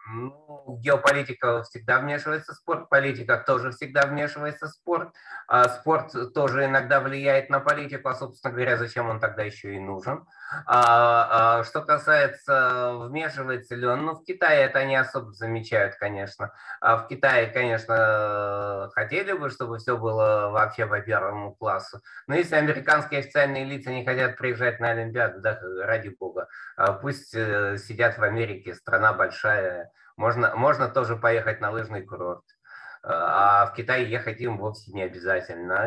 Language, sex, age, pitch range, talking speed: Russian, male, 20-39, 115-140 Hz, 150 wpm